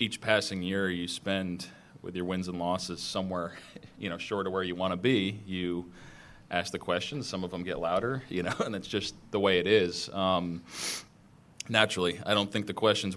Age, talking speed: 20-39, 205 wpm